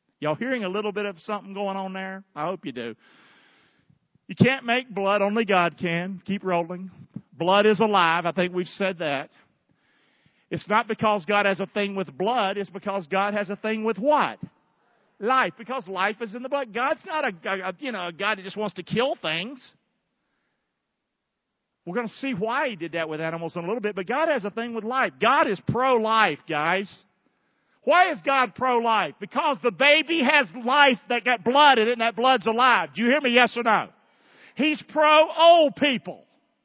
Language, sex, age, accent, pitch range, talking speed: English, male, 50-69, American, 200-285 Hz, 195 wpm